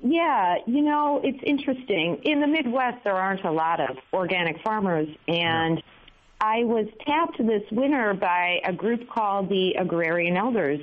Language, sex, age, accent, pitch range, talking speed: English, female, 40-59, American, 165-205 Hz, 155 wpm